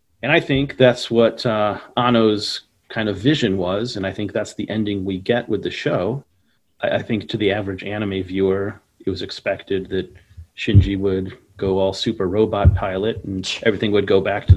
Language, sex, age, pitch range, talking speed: English, male, 40-59, 95-115 Hz, 195 wpm